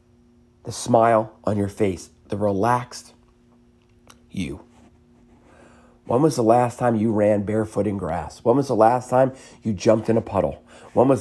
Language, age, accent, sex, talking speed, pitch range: English, 40-59, American, male, 160 wpm, 100-120 Hz